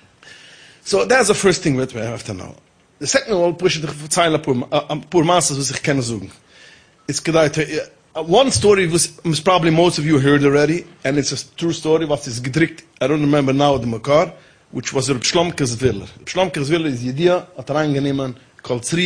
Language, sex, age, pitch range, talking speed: English, male, 30-49, 130-170 Hz, 130 wpm